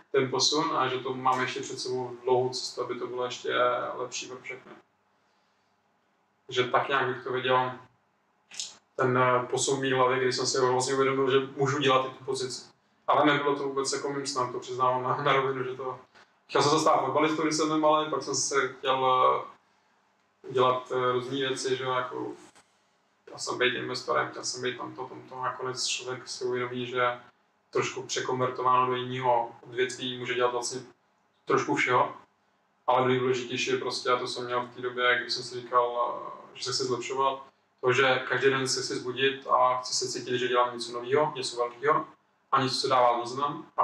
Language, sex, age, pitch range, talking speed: Czech, male, 20-39, 125-135 Hz, 185 wpm